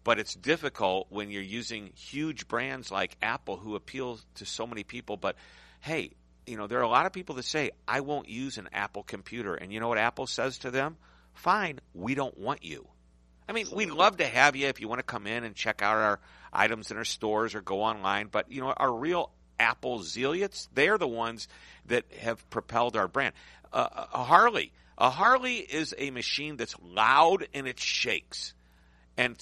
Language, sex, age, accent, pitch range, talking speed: English, male, 50-69, American, 90-130 Hz, 205 wpm